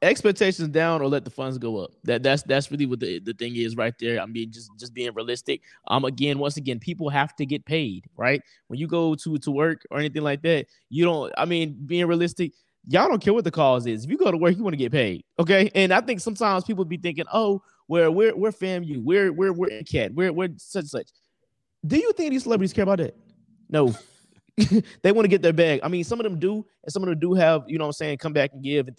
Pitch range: 140-200 Hz